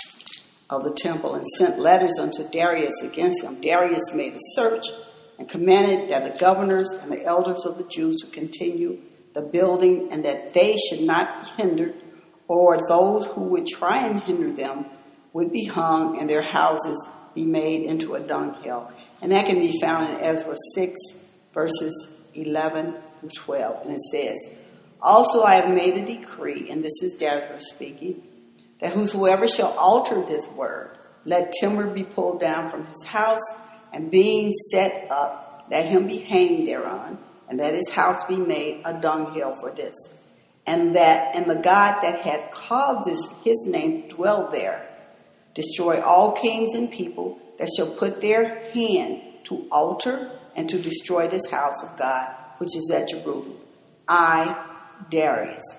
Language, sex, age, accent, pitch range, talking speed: English, female, 60-79, American, 155-225 Hz, 160 wpm